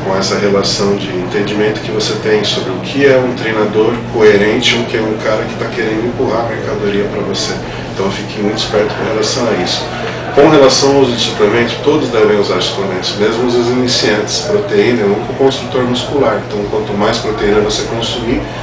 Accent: Brazilian